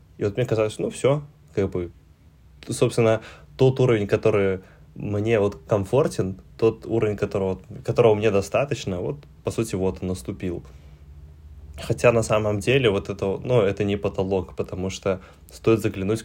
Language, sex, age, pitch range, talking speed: Russian, male, 20-39, 95-110 Hz, 155 wpm